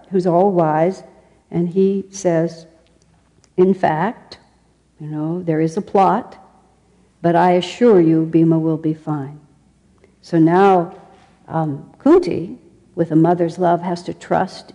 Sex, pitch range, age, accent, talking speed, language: female, 170-200 Hz, 60-79, American, 135 wpm, English